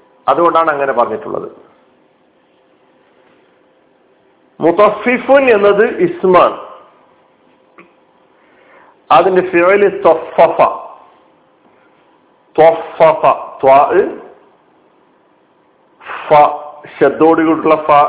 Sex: male